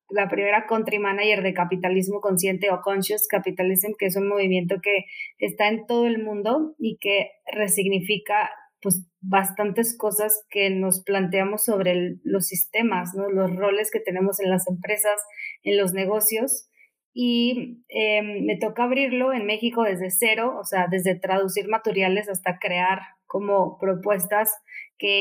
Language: Spanish